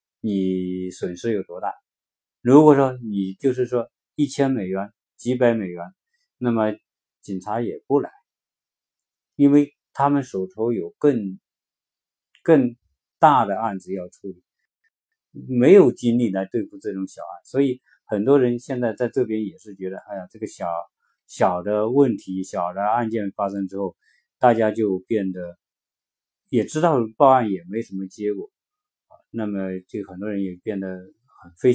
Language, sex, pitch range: Chinese, male, 95-125 Hz